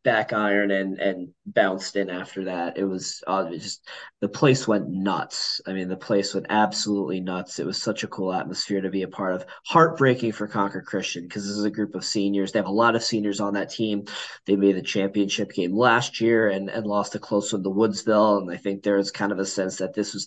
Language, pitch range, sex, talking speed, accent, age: English, 95-110 Hz, male, 240 wpm, American, 20-39